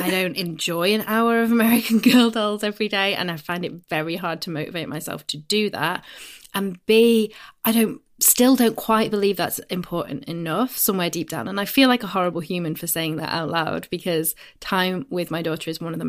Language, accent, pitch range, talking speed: English, British, 170-215 Hz, 215 wpm